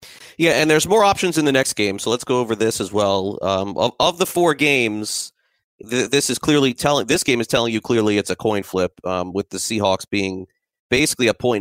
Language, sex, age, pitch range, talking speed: English, male, 30-49, 100-120 Hz, 235 wpm